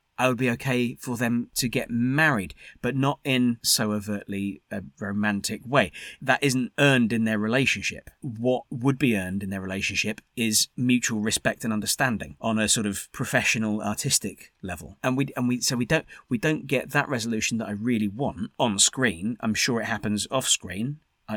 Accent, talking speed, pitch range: British, 190 wpm, 105-125 Hz